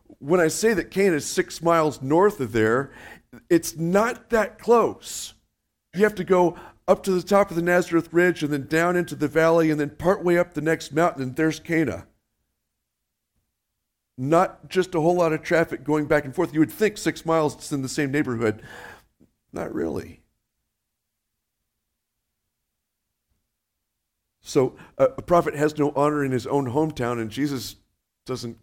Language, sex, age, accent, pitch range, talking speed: English, male, 50-69, American, 110-155 Hz, 165 wpm